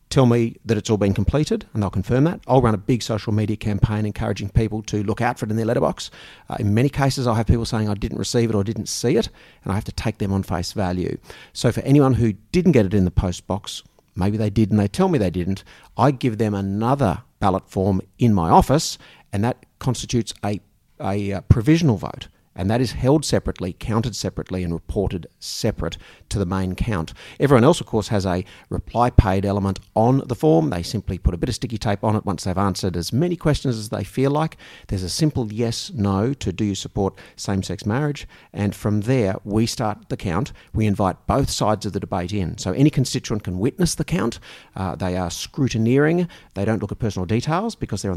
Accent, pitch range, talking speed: Australian, 95-125 Hz, 225 wpm